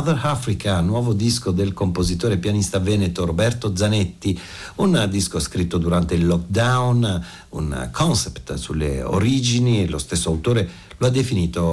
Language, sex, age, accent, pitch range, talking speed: Italian, male, 60-79, native, 85-110 Hz, 130 wpm